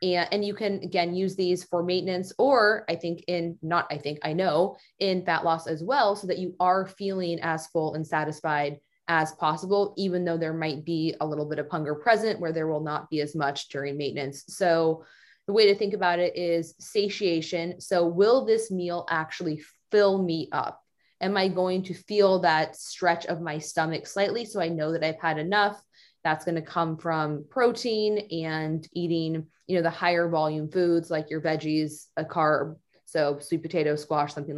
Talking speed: 195 wpm